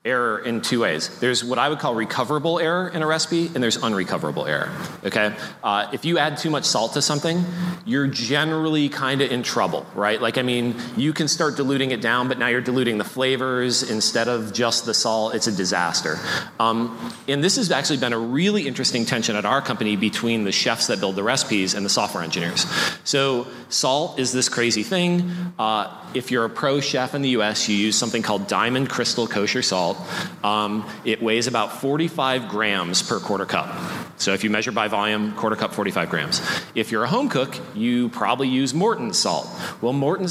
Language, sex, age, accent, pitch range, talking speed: English, male, 30-49, American, 115-160 Hz, 200 wpm